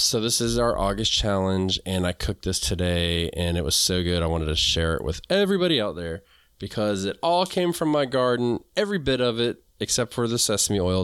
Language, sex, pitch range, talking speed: English, male, 95-120 Hz, 225 wpm